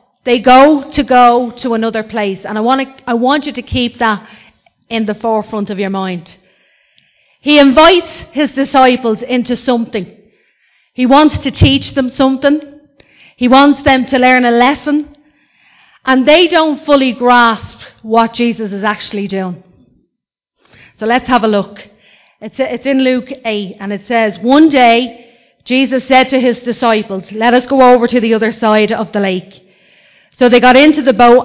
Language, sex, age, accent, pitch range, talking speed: English, female, 30-49, Irish, 220-270 Hz, 170 wpm